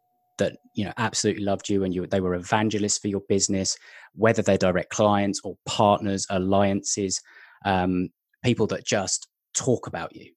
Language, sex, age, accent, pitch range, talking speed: English, male, 20-39, British, 95-120 Hz, 160 wpm